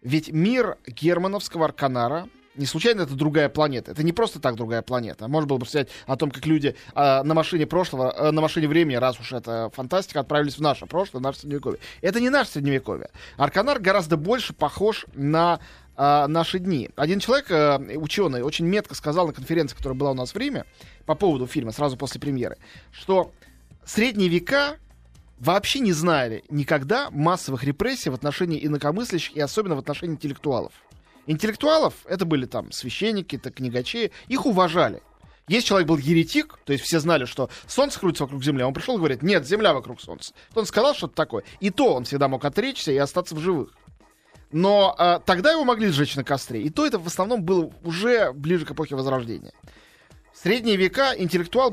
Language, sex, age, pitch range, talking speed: Russian, male, 20-39, 140-185 Hz, 185 wpm